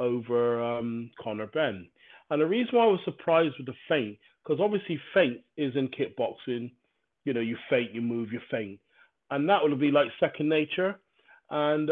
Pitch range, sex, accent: 115-145 Hz, male, British